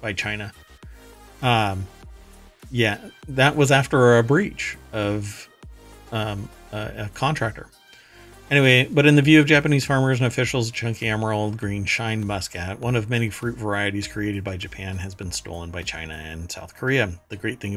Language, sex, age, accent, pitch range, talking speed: English, male, 40-59, American, 95-120 Hz, 160 wpm